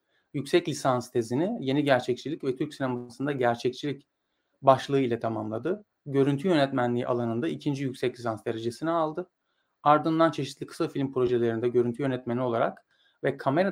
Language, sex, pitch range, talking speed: Turkish, male, 125-160 Hz, 130 wpm